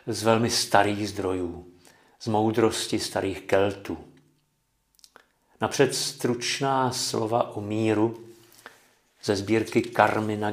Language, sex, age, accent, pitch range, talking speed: Czech, male, 50-69, native, 105-120 Hz, 90 wpm